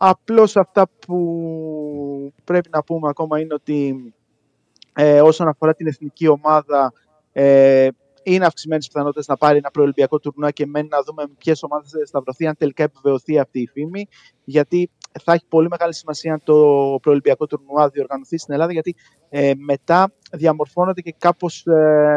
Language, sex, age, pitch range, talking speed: Greek, male, 30-49, 145-180 Hz, 155 wpm